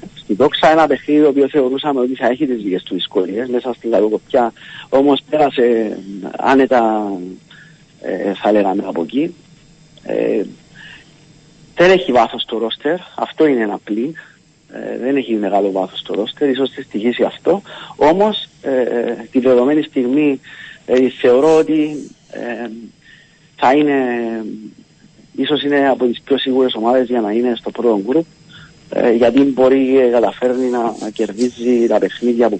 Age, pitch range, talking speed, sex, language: 50-69, 115-150 Hz, 135 wpm, male, Greek